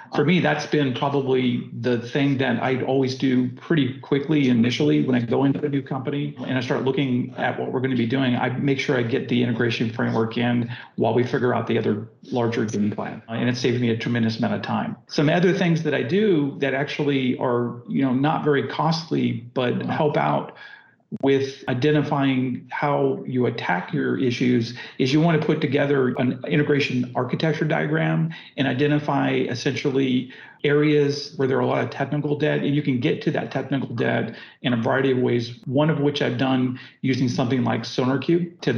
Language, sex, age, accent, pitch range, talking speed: English, male, 40-59, American, 125-145 Hz, 200 wpm